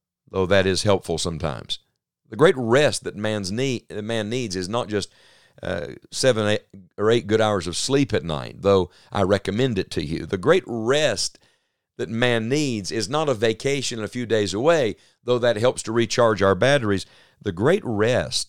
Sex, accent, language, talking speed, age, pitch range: male, American, English, 185 wpm, 50-69, 95-120 Hz